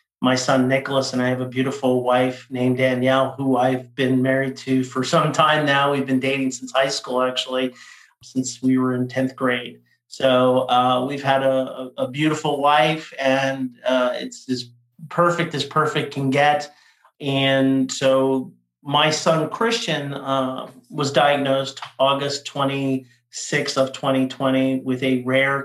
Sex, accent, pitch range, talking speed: male, American, 130-140 Hz, 150 wpm